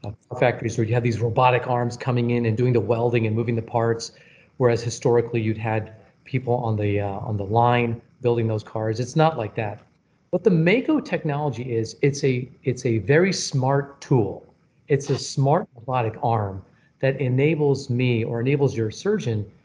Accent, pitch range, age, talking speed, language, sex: American, 115-155 Hz, 40-59, 185 wpm, English, male